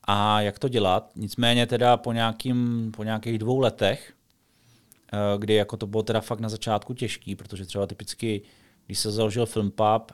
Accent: native